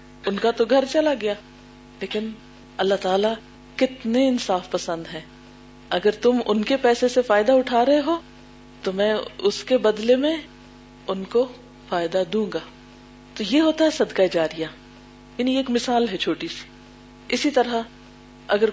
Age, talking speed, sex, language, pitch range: 40-59, 155 wpm, female, Urdu, 180-245 Hz